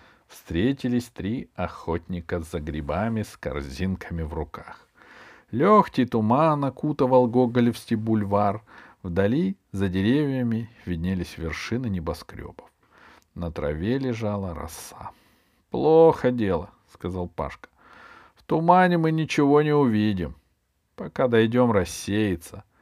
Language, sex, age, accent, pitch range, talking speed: Russian, male, 50-69, native, 90-125 Hz, 95 wpm